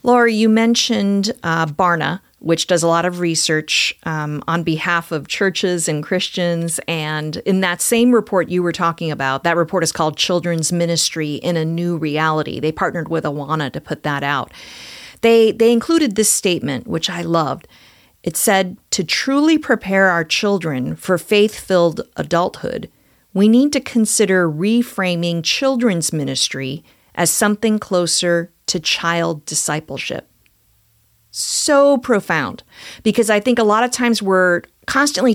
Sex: female